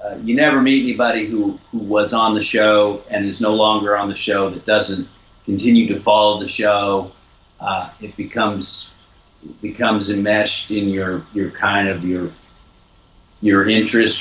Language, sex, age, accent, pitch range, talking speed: English, male, 40-59, American, 100-120 Hz, 165 wpm